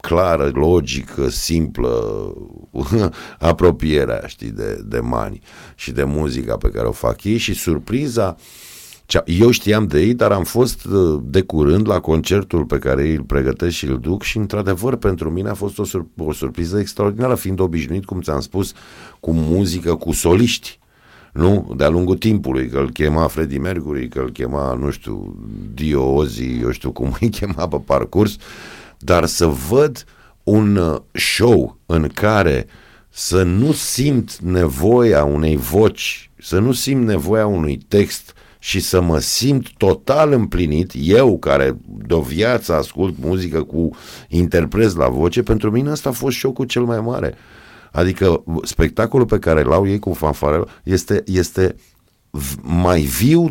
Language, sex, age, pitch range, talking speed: Romanian, male, 50-69, 80-110 Hz, 150 wpm